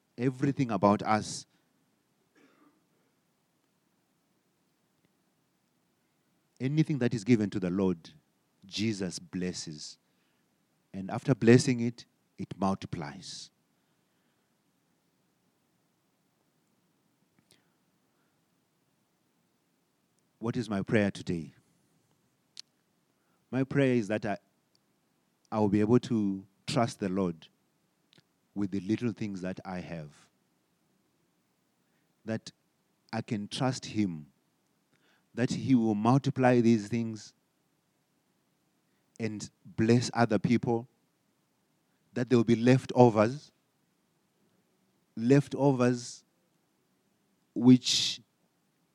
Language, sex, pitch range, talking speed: English, male, 100-125 Hz, 80 wpm